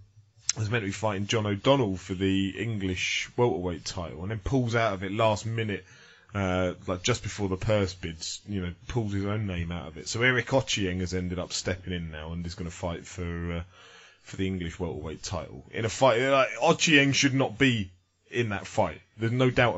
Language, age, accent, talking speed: English, 20-39, British, 215 wpm